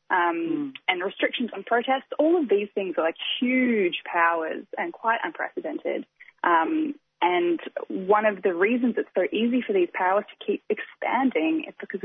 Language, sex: English, female